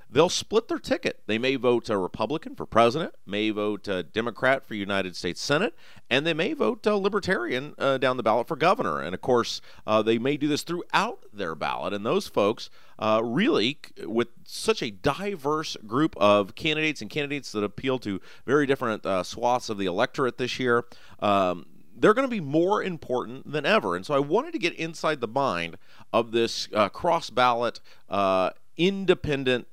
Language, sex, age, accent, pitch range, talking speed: English, male, 40-59, American, 110-165 Hz, 185 wpm